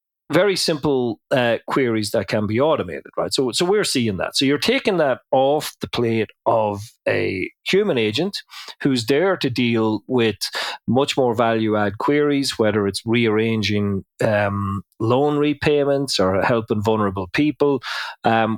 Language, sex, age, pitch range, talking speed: English, male, 40-59, 110-145 Hz, 150 wpm